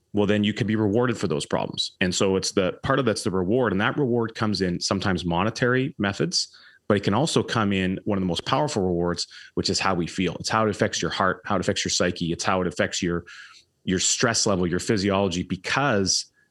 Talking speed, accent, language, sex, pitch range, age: 235 wpm, American, English, male, 90-110 Hz, 30-49